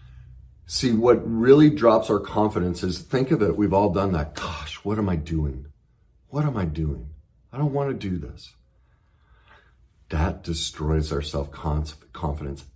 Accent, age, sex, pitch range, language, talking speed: American, 50-69, male, 75-100 Hz, English, 155 wpm